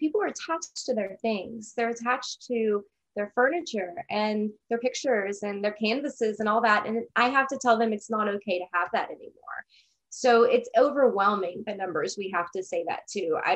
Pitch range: 190-235 Hz